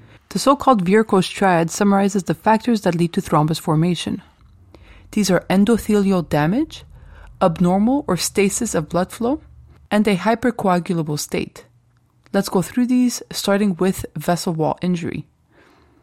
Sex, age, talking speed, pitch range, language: female, 30-49, 130 wpm, 165-205 Hz, English